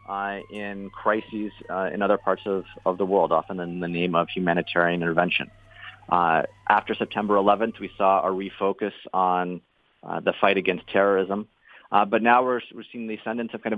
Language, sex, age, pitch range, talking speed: English, male, 30-49, 95-105 Hz, 185 wpm